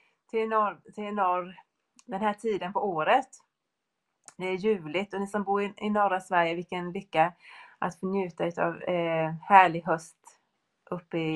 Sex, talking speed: female, 155 wpm